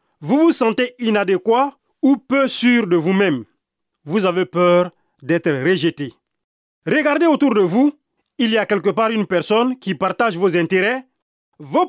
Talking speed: 150 wpm